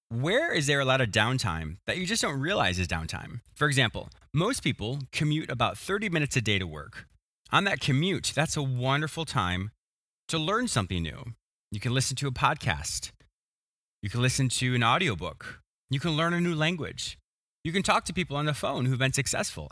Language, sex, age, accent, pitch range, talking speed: English, male, 30-49, American, 95-135 Hz, 200 wpm